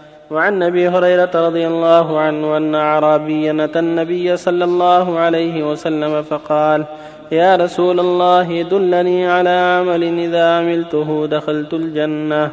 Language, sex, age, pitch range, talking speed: Arabic, male, 20-39, 155-180 Hz, 125 wpm